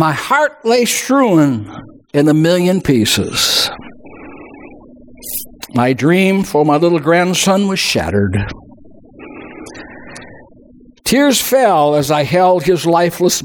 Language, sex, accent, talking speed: English, male, American, 105 wpm